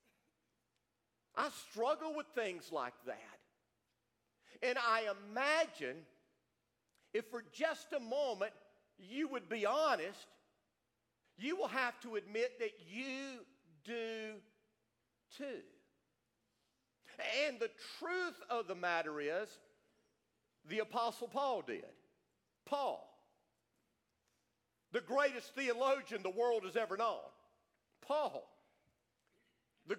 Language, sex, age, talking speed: English, male, 50-69, 100 wpm